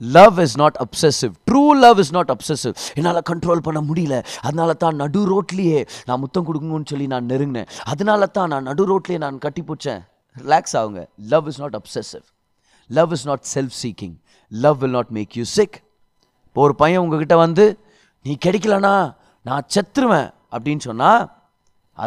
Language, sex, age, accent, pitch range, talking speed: Tamil, male, 30-49, native, 135-200 Hz, 160 wpm